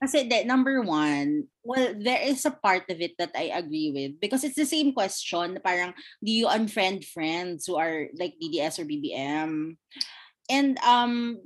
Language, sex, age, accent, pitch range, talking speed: Filipino, female, 20-39, native, 165-245 Hz, 180 wpm